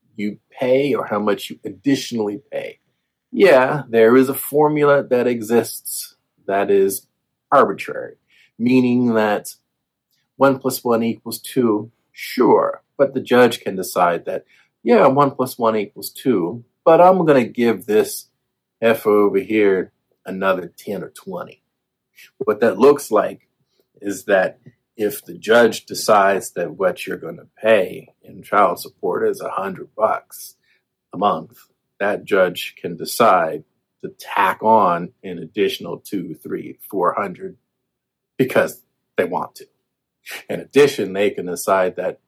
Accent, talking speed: American, 140 wpm